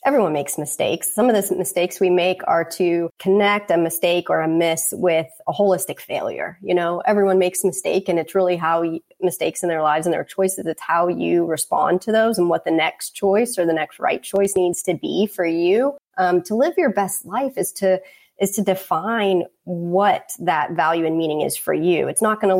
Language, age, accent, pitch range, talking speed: English, 30-49, American, 165-195 Hz, 215 wpm